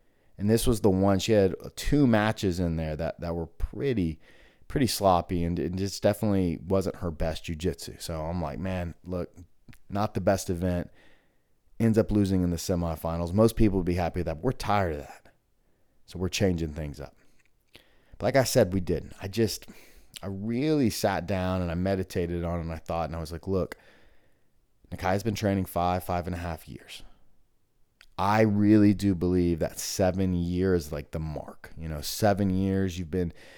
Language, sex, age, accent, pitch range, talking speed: English, male, 30-49, American, 85-100 Hz, 195 wpm